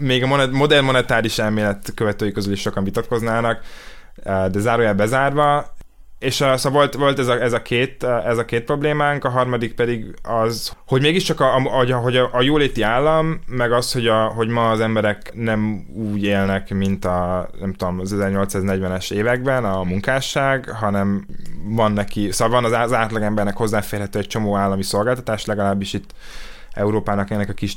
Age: 20-39